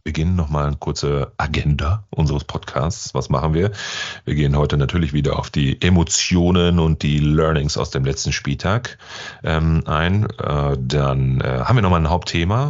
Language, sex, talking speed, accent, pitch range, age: German, male, 170 wpm, German, 75-95 Hz, 30-49